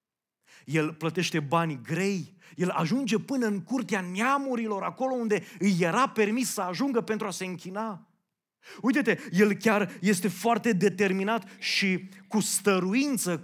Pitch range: 175-225 Hz